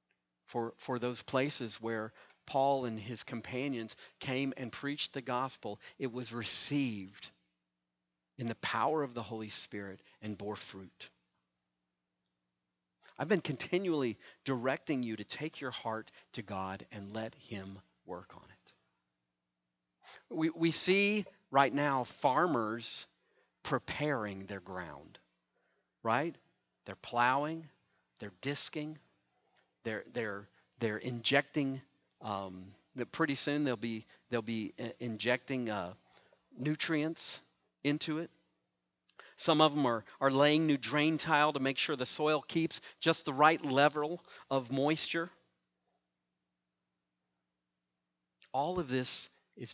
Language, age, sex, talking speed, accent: English, 40-59, male, 120 wpm, American